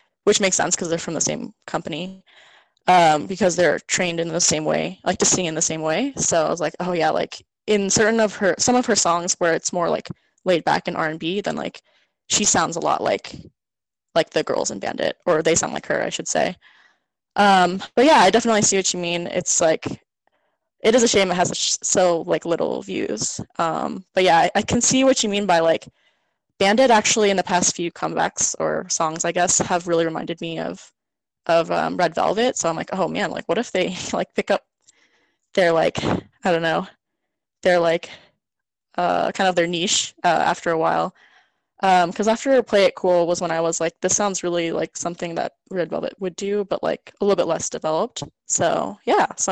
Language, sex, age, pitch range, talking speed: English, female, 10-29, 170-205 Hz, 215 wpm